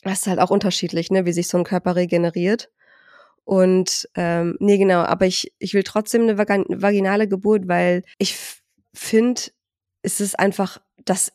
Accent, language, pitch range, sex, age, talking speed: German, German, 180-215 Hz, female, 20-39, 170 wpm